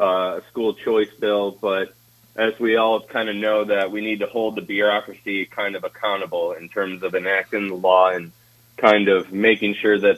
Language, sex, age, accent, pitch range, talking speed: English, male, 20-39, American, 100-120 Hz, 195 wpm